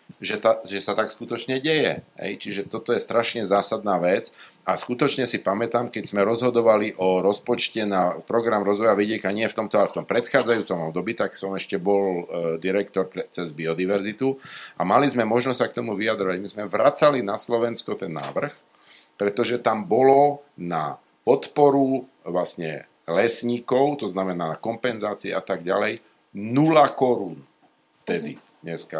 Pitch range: 95-125 Hz